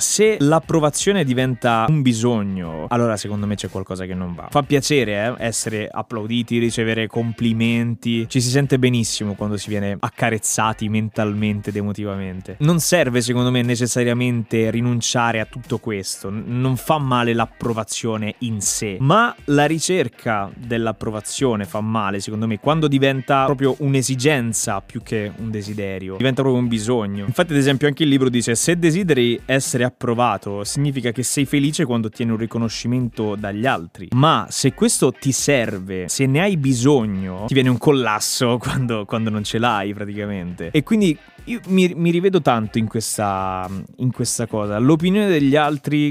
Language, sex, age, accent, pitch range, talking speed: Italian, male, 20-39, native, 110-145 Hz, 160 wpm